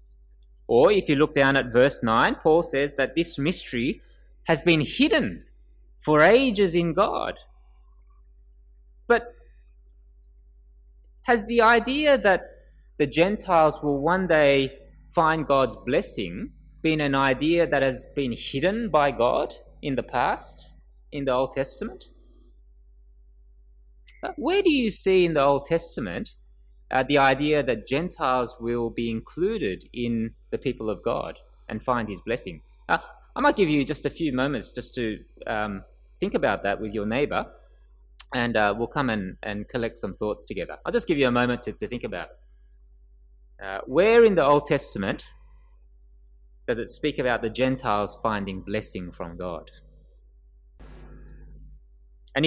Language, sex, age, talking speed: English, male, 20-39, 150 wpm